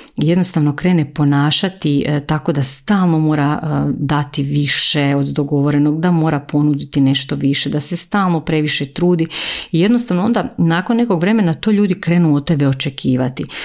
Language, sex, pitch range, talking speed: Croatian, female, 140-165 Hz, 155 wpm